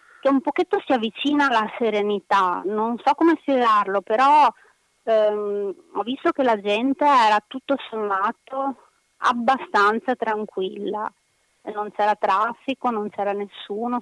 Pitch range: 195-240 Hz